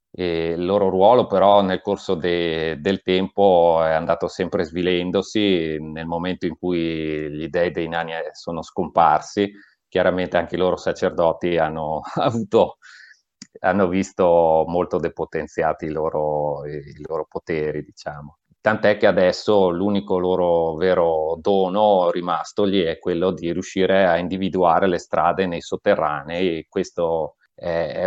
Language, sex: Italian, male